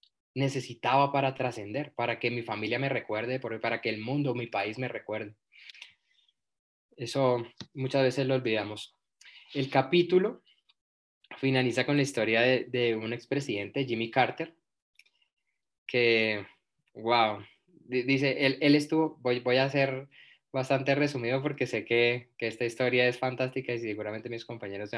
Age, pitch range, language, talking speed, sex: 20-39, 120-140 Hz, Spanish, 140 wpm, male